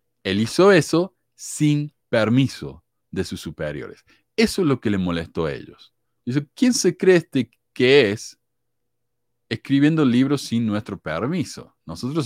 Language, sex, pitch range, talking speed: Spanish, male, 100-135 Hz, 135 wpm